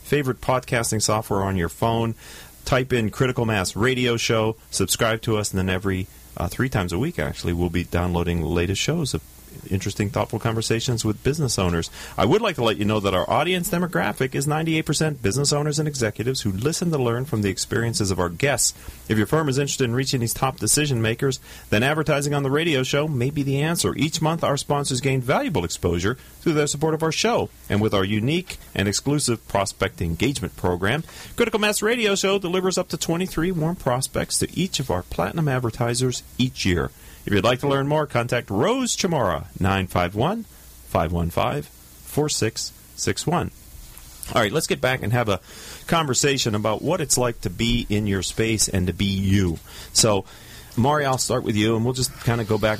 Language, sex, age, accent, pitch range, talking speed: English, male, 40-59, American, 95-140 Hz, 195 wpm